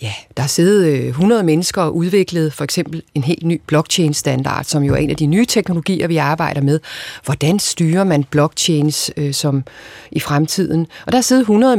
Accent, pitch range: native, 150-195 Hz